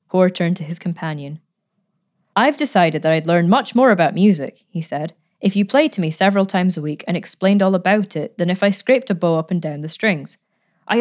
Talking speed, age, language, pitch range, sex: 230 wpm, 20-39, English, 170-205 Hz, female